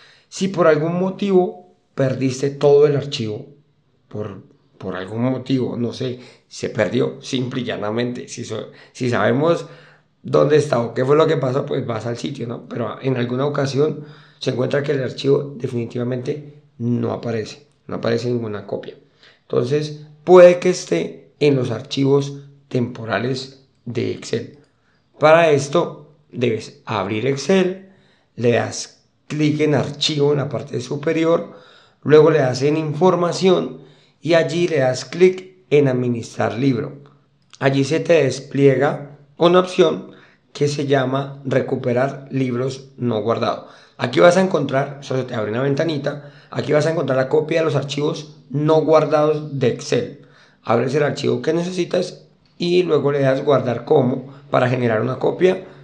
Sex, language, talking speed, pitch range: male, Spanish, 150 wpm, 125-155 Hz